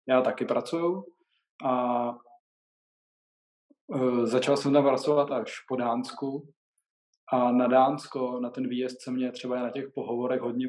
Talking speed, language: 135 wpm, Czech